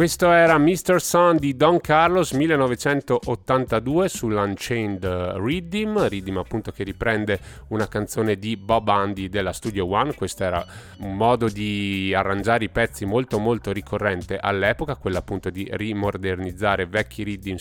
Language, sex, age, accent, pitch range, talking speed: Italian, male, 30-49, native, 95-120 Hz, 135 wpm